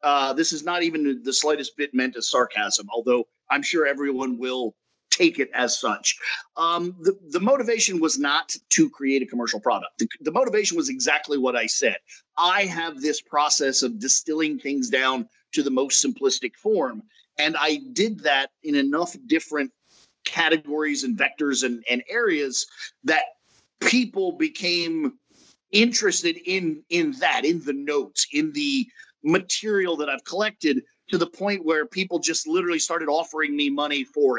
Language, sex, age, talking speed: English, male, 50-69, 160 wpm